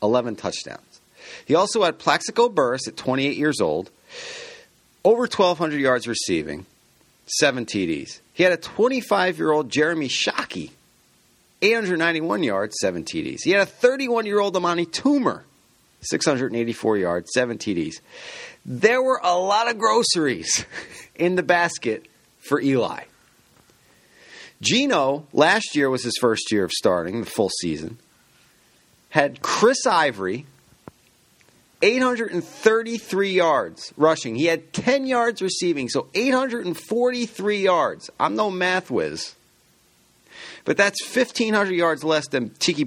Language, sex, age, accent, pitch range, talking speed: English, male, 40-59, American, 145-230 Hz, 120 wpm